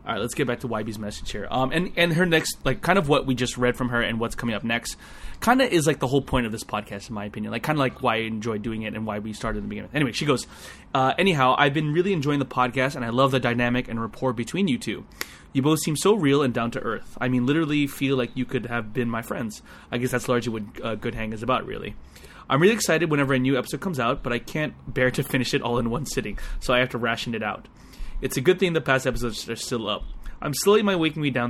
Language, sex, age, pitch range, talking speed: English, male, 20-39, 115-150 Hz, 290 wpm